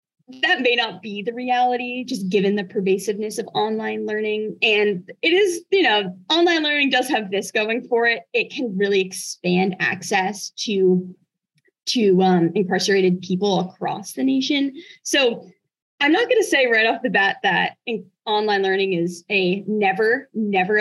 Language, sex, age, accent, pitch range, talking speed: English, female, 20-39, American, 190-250 Hz, 160 wpm